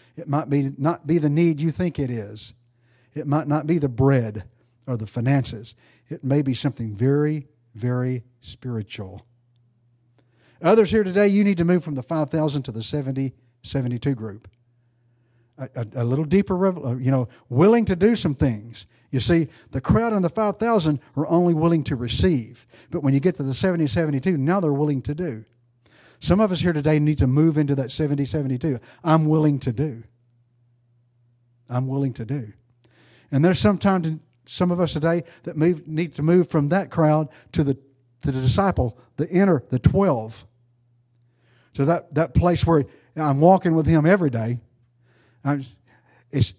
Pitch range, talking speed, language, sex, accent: 120-160 Hz, 175 wpm, English, male, American